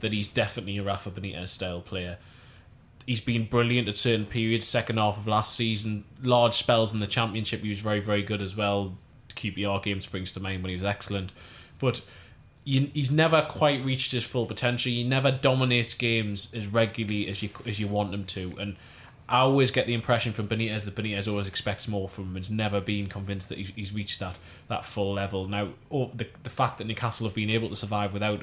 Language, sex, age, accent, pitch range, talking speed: English, male, 20-39, British, 100-115 Hz, 205 wpm